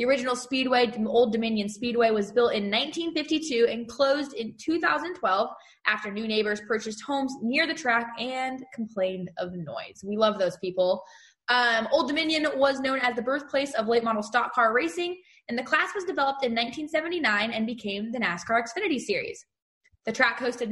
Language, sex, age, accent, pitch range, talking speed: English, female, 20-39, American, 220-270 Hz, 175 wpm